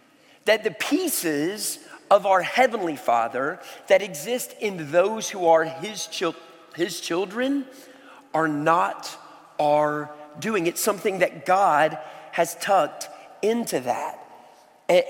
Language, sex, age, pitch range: English, male, 40-59, 140-190 Hz